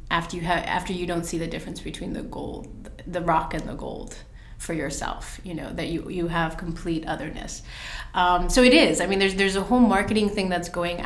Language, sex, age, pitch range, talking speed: English, female, 30-49, 165-185 Hz, 220 wpm